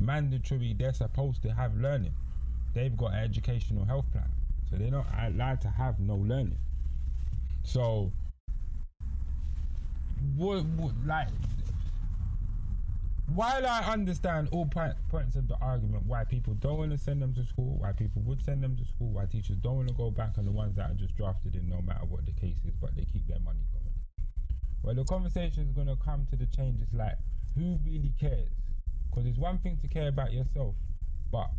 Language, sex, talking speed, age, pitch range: English, male, 190 wpm, 20-39, 90-130 Hz